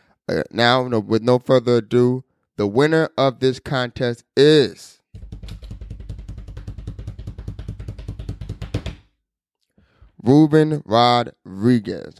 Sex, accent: male, American